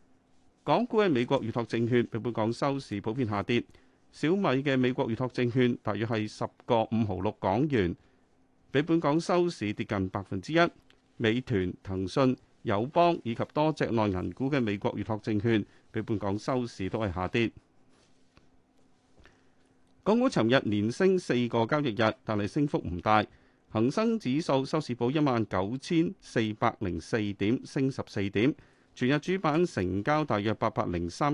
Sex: male